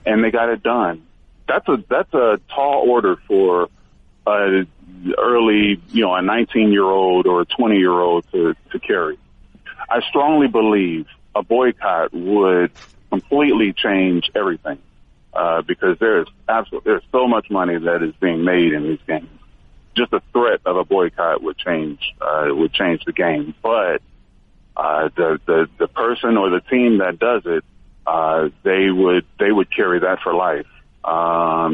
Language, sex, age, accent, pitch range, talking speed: English, male, 40-59, American, 90-115 Hz, 165 wpm